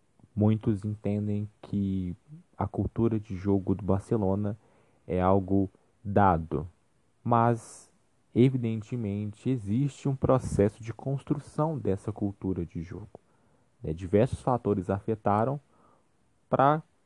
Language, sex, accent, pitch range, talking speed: Portuguese, male, Brazilian, 95-120 Hz, 100 wpm